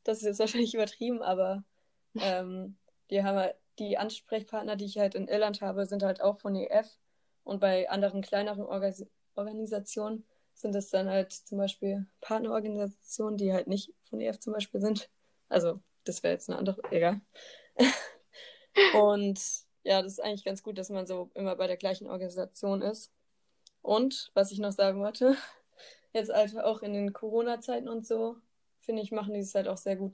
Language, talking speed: German, 175 wpm